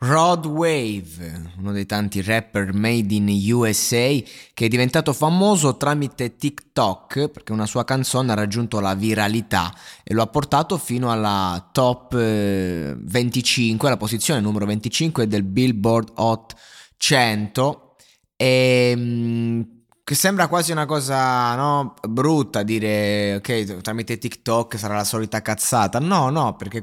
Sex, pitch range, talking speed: male, 110-140 Hz, 130 wpm